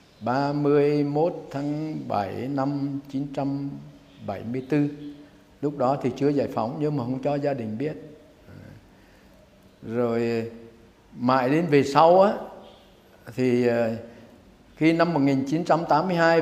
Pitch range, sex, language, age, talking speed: 125-155 Hz, male, Vietnamese, 60-79, 100 wpm